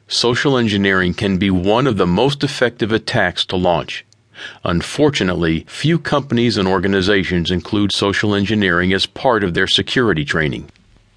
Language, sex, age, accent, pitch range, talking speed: English, male, 40-59, American, 90-115 Hz, 140 wpm